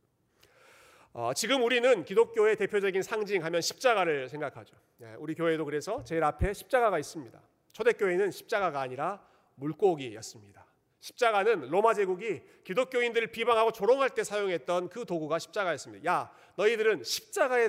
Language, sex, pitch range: Korean, male, 150-250 Hz